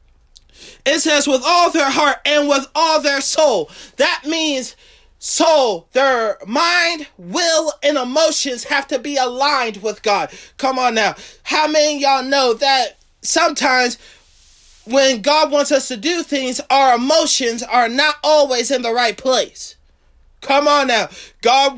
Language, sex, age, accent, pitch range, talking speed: English, male, 20-39, American, 245-305 Hz, 150 wpm